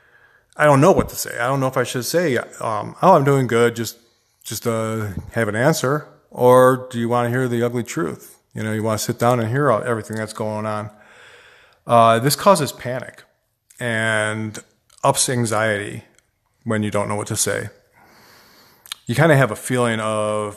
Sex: male